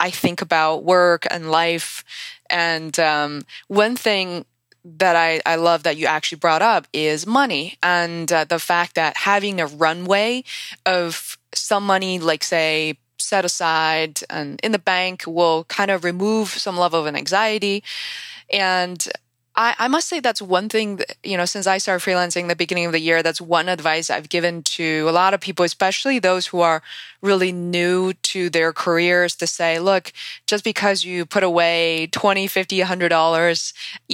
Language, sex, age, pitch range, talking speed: English, female, 20-39, 165-195 Hz, 175 wpm